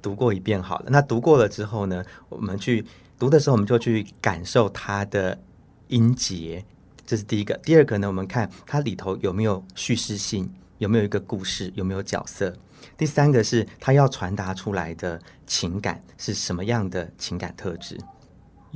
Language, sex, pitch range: Chinese, male, 100-135 Hz